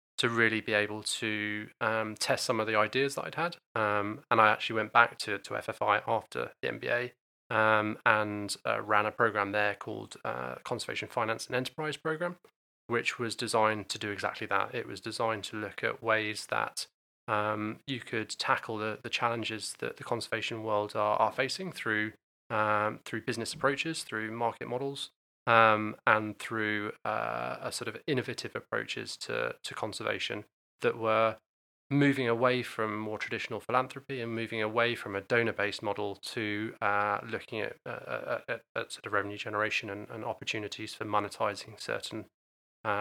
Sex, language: male, English